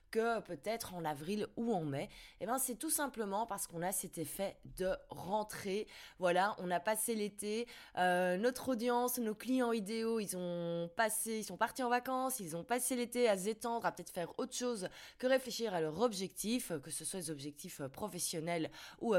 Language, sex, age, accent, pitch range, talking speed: French, female, 20-39, French, 175-235 Hz, 190 wpm